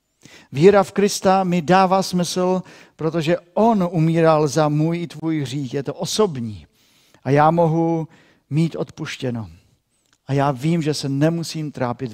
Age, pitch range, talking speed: 50-69, 125-170 Hz, 145 wpm